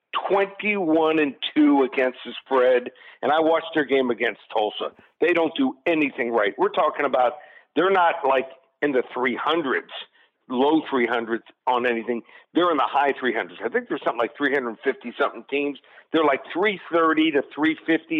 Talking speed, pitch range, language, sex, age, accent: 160 wpm, 135-165 Hz, English, male, 50-69, American